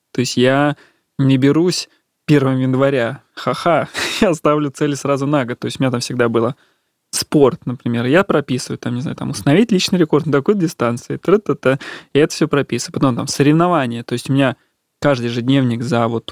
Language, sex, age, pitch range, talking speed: Russian, male, 20-39, 125-145 Hz, 185 wpm